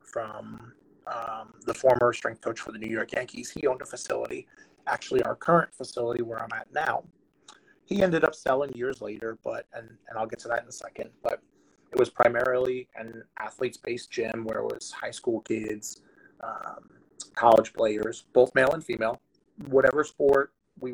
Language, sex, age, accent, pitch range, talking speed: English, male, 30-49, American, 115-130 Hz, 180 wpm